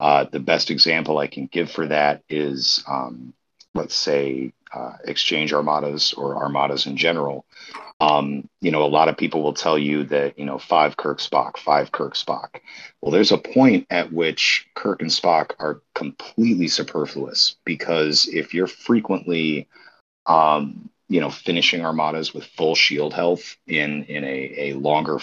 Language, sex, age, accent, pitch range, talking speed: English, male, 40-59, American, 75-85 Hz, 165 wpm